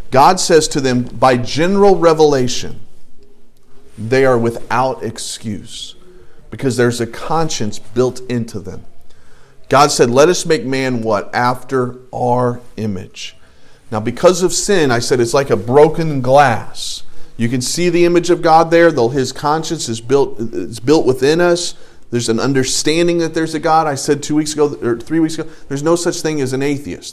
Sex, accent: male, American